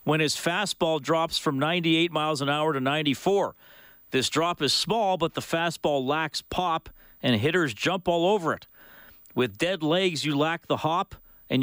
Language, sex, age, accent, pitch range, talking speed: English, male, 40-59, American, 120-165 Hz, 175 wpm